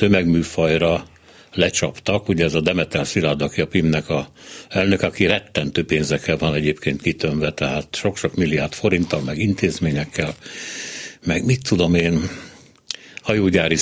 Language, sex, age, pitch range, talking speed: Hungarian, male, 60-79, 80-105 Hz, 125 wpm